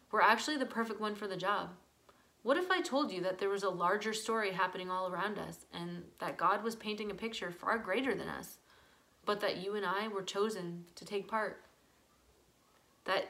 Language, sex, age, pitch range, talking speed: English, female, 20-39, 190-235 Hz, 200 wpm